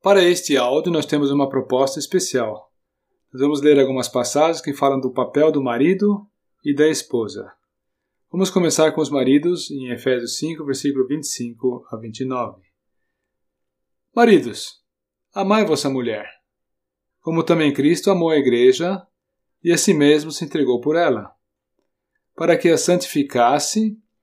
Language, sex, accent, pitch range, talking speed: Portuguese, male, Brazilian, 120-165 Hz, 140 wpm